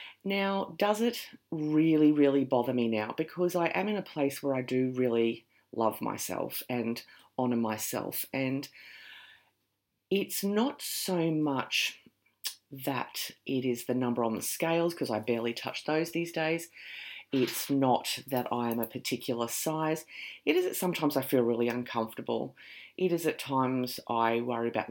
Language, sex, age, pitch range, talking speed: English, female, 30-49, 120-165 Hz, 160 wpm